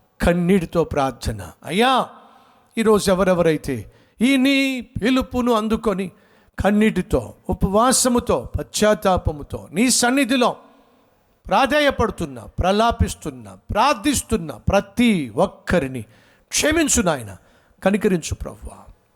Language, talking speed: Telugu, 70 wpm